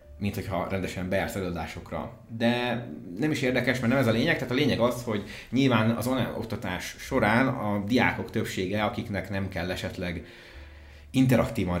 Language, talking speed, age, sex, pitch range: Hungarian, 165 wpm, 30-49, male, 85-110 Hz